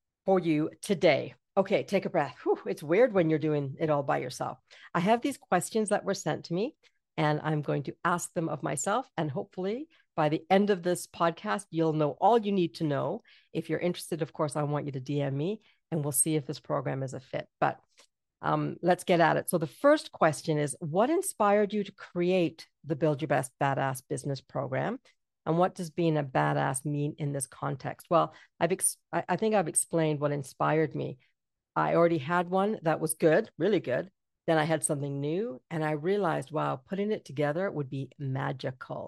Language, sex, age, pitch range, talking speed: English, female, 50-69, 150-195 Hz, 205 wpm